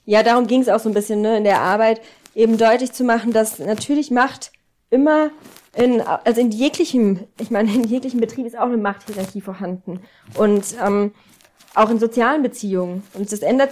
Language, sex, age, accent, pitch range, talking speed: German, female, 30-49, German, 200-230 Hz, 190 wpm